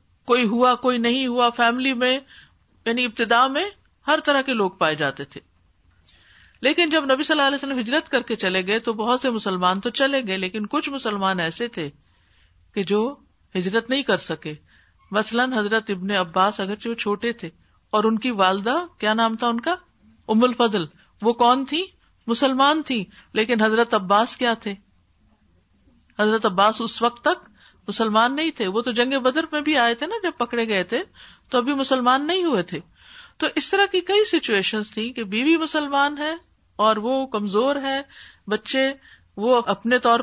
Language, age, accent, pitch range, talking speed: English, 50-69, Indian, 205-275 Hz, 160 wpm